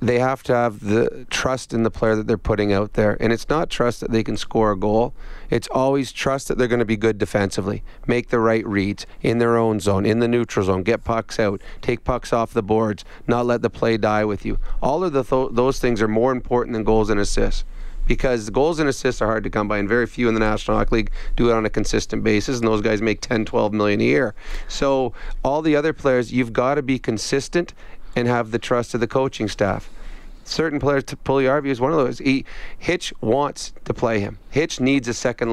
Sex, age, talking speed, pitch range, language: male, 30-49, 235 wpm, 110-125 Hz, English